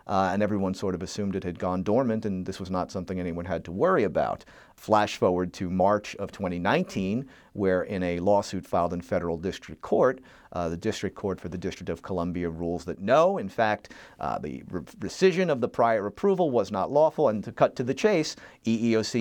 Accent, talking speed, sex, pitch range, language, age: American, 210 wpm, male, 90-110 Hz, English, 40-59